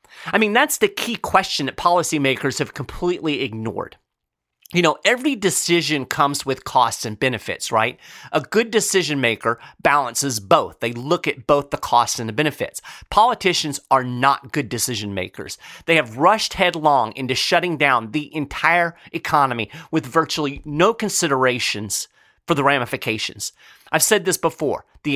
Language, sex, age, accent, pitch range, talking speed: English, male, 30-49, American, 130-170 Hz, 155 wpm